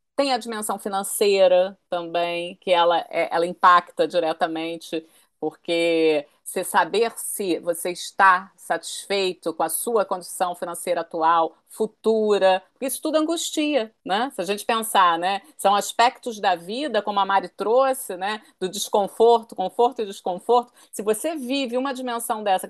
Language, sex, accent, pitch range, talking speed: Portuguese, female, Brazilian, 180-230 Hz, 140 wpm